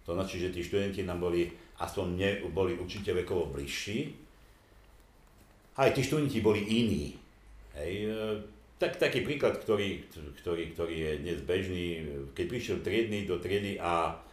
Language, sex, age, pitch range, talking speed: Slovak, male, 60-79, 75-105 Hz, 135 wpm